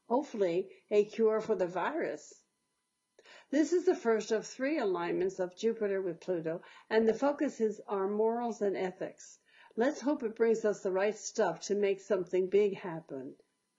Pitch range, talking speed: 195-235 Hz, 165 wpm